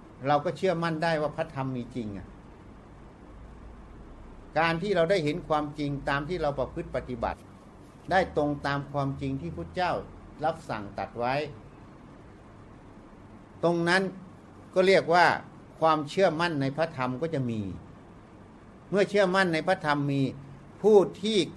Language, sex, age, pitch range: Thai, male, 60-79, 125-170 Hz